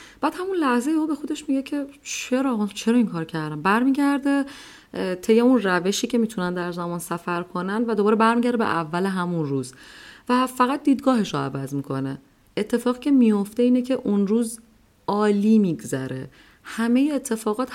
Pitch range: 170-235 Hz